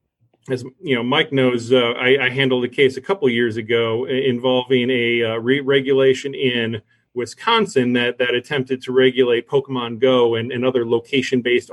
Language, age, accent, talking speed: English, 30-49, American, 170 wpm